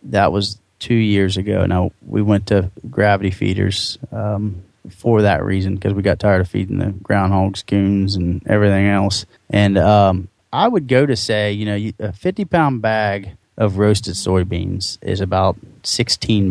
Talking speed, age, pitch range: 165 wpm, 30-49, 95-110 Hz